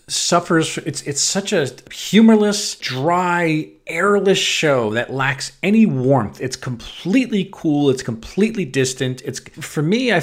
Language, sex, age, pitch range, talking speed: English, male, 40-59, 120-160 Hz, 135 wpm